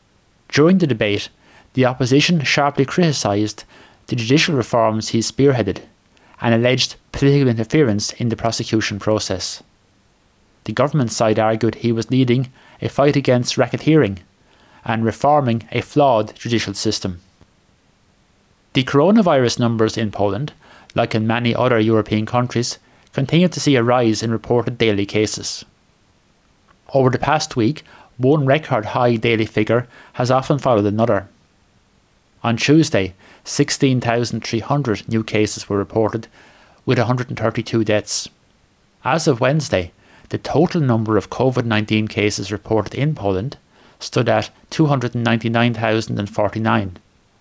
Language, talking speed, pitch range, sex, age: English, 120 wpm, 105-130 Hz, male, 30-49